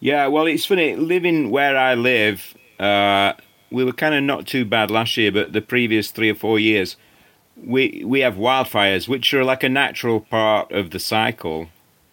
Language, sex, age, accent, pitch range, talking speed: English, male, 40-59, British, 100-115 Hz, 190 wpm